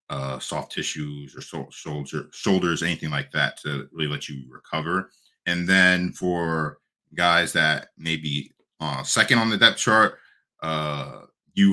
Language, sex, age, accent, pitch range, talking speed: English, male, 30-49, American, 70-80 Hz, 145 wpm